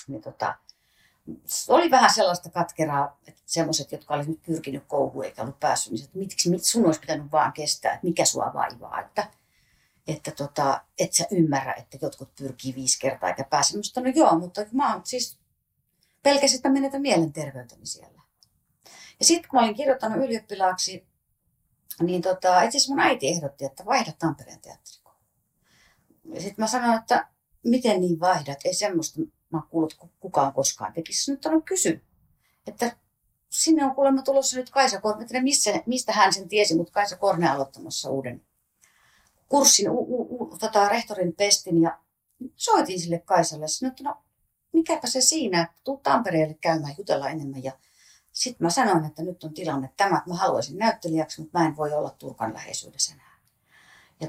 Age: 40-59